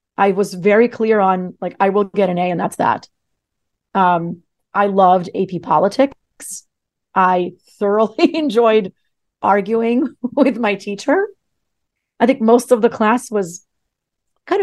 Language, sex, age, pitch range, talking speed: English, female, 30-49, 180-220 Hz, 140 wpm